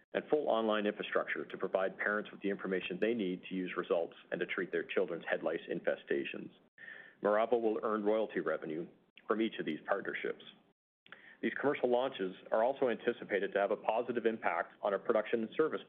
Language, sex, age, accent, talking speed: English, male, 40-59, American, 185 wpm